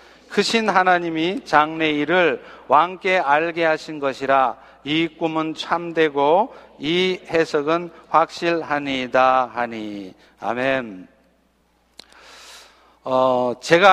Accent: native